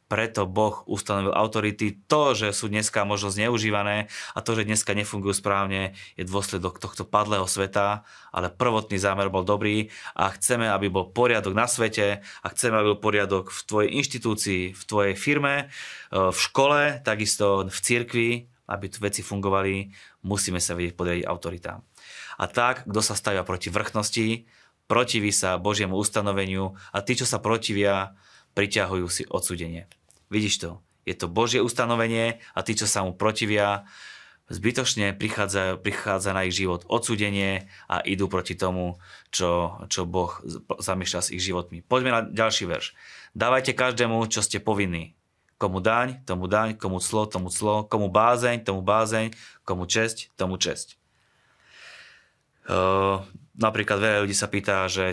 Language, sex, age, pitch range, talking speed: Slovak, male, 20-39, 95-110 Hz, 150 wpm